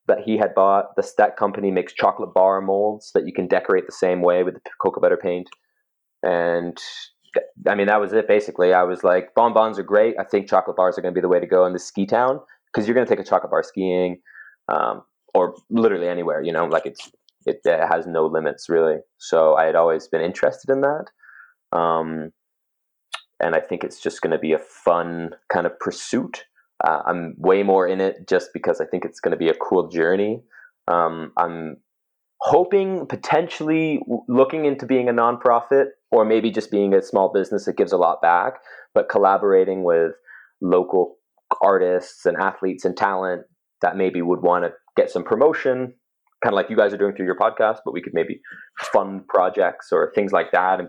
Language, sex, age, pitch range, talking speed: English, male, 20-39, 90-140 Hz, 205 wpm